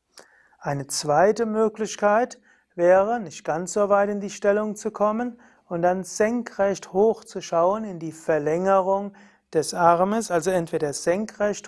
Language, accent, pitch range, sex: German, German, 160-205 Hz, male